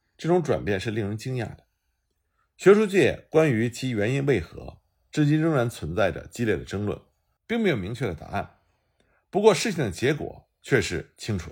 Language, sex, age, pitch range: Chinese, male, 50-69, 100-140 Hz